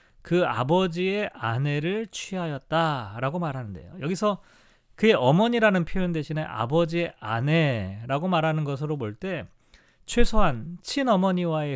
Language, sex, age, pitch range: Korean, male, 40-59, 130-180 Hz